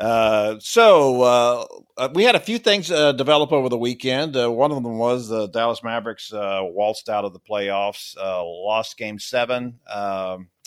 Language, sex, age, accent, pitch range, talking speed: English, male, 50-69, American, 100-130 Hz, 185 wpm